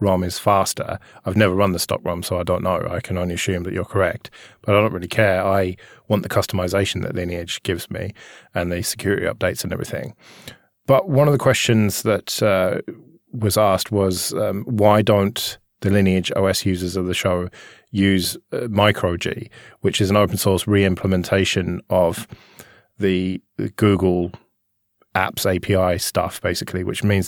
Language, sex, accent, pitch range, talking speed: English, male, British, 90-105 Hz, 170 wpm